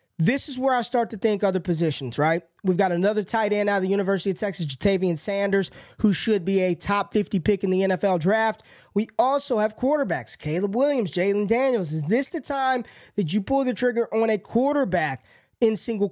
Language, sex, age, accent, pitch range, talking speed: English, male, 20-39, American, 185-235 Hz, 210 wpm